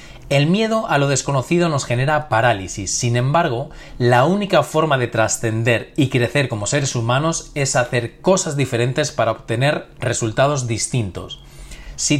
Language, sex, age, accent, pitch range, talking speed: Spanish, male, 30-49, Spanish, 120-155 Hz, 145 wpm